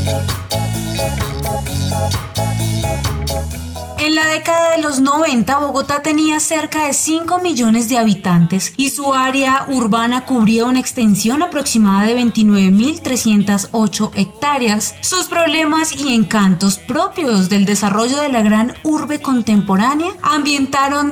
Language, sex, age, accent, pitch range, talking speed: Spanish, female, 20-39, Colombian, 200-275 Hz, 110 wpm